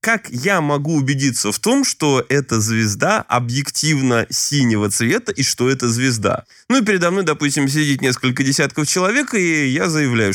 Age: 20-39